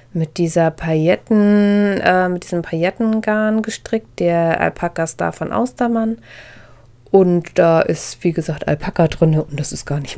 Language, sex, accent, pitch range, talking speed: German, female, German, 120-175 Hz, 155 wpm